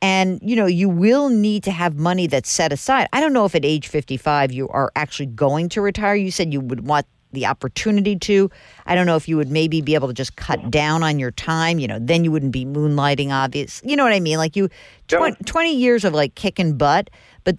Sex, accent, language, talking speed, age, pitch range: female, American, English, 245 wpm, 50-69, 135-195 Hz